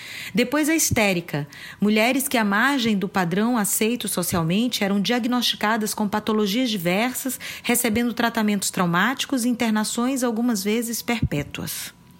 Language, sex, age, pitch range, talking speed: Portuguese, female, 30-49, 170-225 Hz, 120 wpm